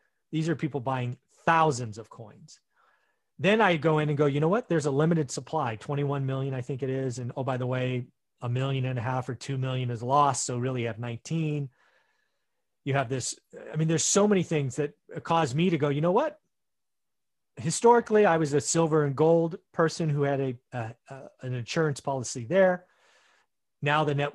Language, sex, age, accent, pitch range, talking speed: English, male, 30-49, American, 125-160 Hz, 200 wpm